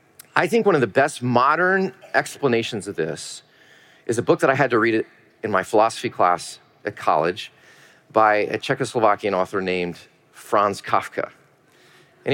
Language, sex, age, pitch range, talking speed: English, male, 40-59, 140-195 Hz, 160 wpm